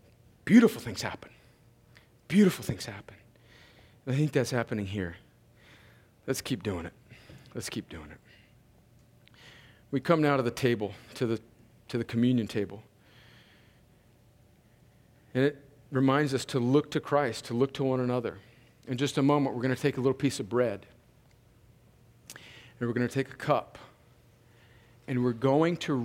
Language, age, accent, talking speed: English, 40-59, American, 155 wpm